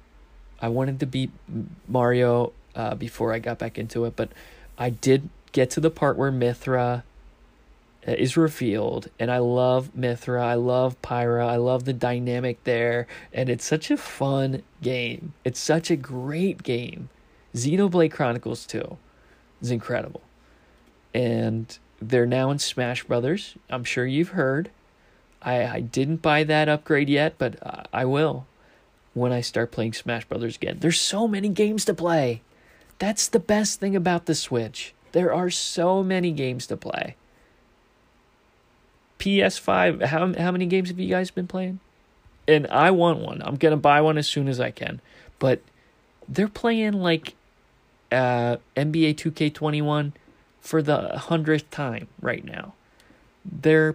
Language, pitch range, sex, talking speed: English, 120-160 Hz, male, 150 wpm